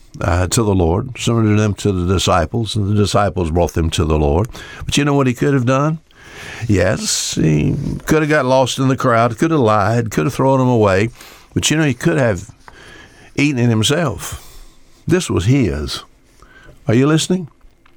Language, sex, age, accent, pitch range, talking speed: English, male, 60-79, American, 100-130 Hz, 190 wpm